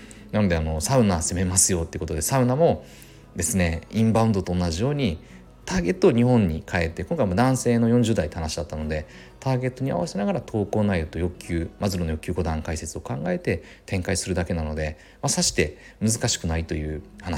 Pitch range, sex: 85-140 Hz, male